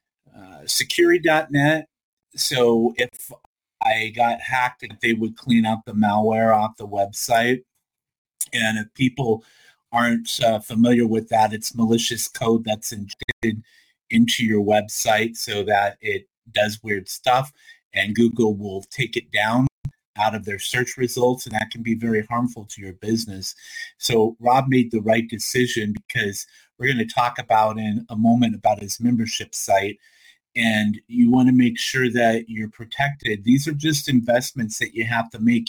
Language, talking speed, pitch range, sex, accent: English, 160 wpm, 110-125 Hz, male, American